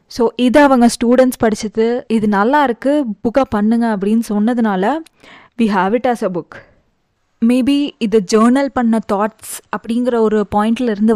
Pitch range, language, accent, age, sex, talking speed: 210-255 Hz, Tamil, native, 20-39, female, 140 wpm